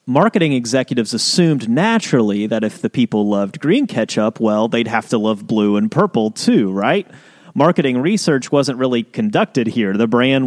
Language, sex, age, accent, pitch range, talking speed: English, male, 30-49, American, 115-175 Hz, 165 wpm